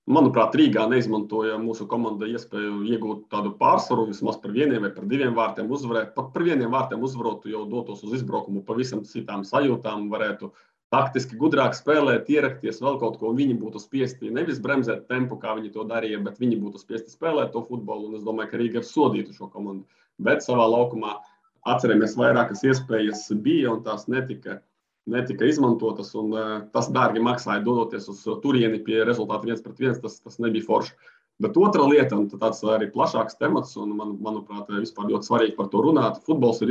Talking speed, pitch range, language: 180 wpm, 105-120 Hz, English